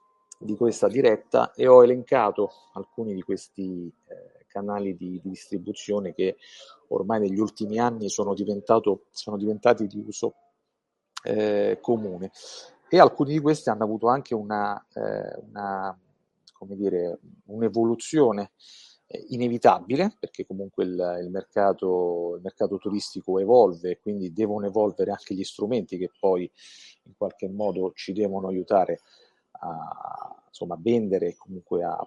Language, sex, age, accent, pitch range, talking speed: Italian, male, 40-59, native, 95-125 Hz, 130 wpm